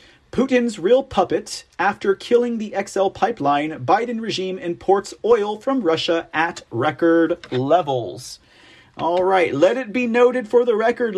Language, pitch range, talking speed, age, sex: English, 165-235 Hz, 140 wpm, 30-49, male